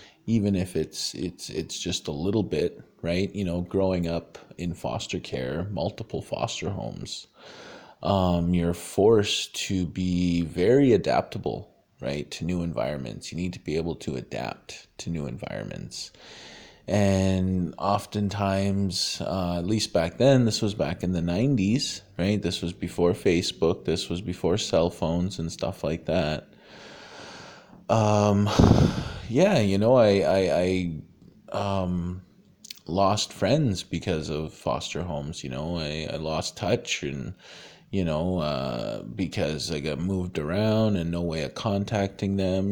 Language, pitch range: English, 85-100 Hz